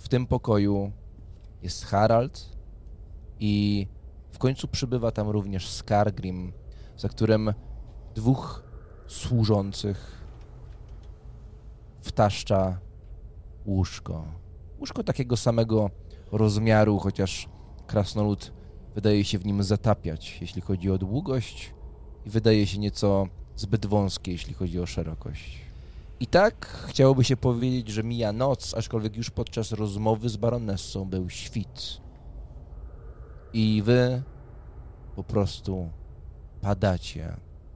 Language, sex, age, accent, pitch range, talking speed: English, male, 20-39, Polish, 85-105 Hz, 100 wpm